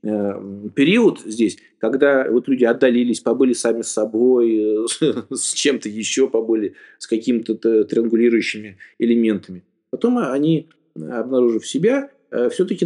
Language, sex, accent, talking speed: Russian, male, native, 105 wpm